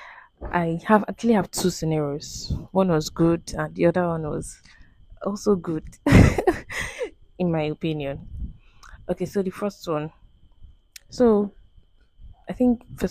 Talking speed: 130 wpm